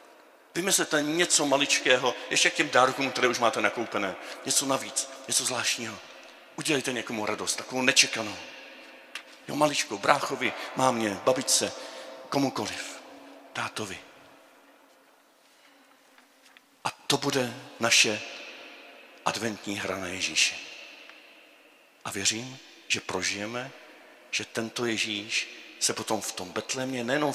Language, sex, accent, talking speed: Czech, male, native, 105 wpm